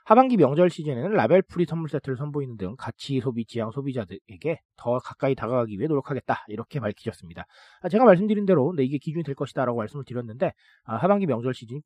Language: Korean